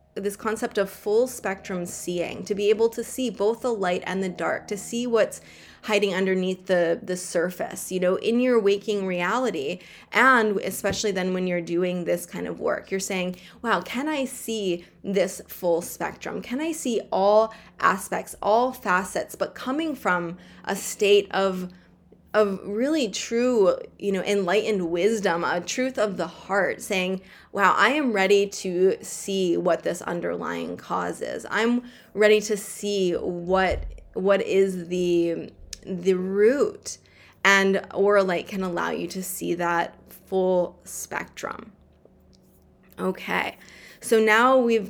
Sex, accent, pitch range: female, American, 180-220 Hz